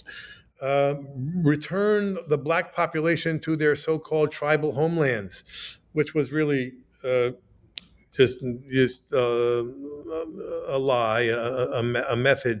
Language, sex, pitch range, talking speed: English, male, 120-155 Hz, 110 wpm